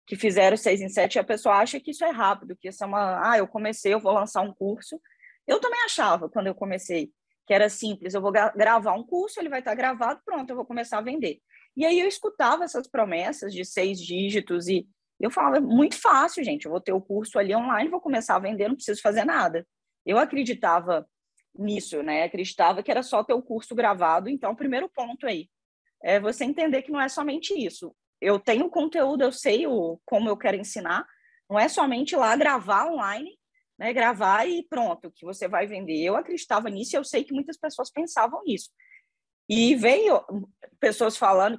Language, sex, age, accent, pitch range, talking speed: Portuguese, female, 20-39, Brazilian, 200-295 Hz, 210 wpm